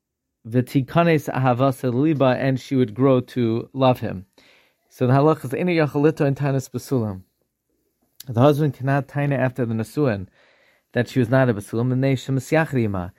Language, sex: English, male